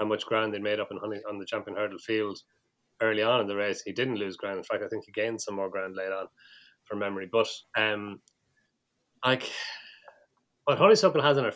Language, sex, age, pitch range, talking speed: English, male, 30-49, 100-110 Hz, 225 wpm